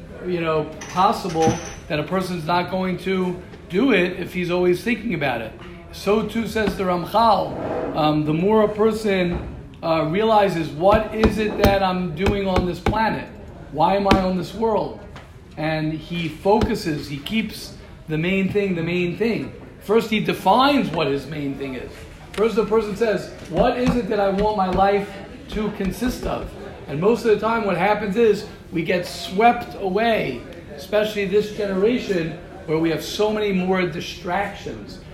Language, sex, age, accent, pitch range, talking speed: English, male, 40-59, American, 160-210 Hz, 170 wpm